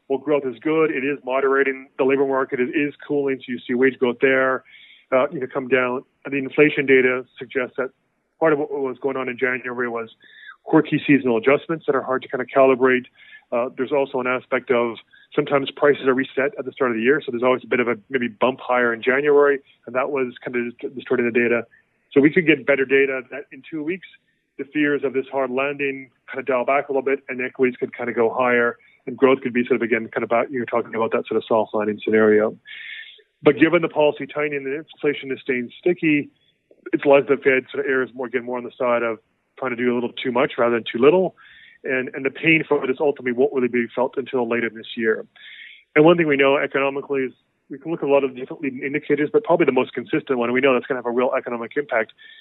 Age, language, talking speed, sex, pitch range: 30-49, English, 250 wpm, male, 125-145 Hz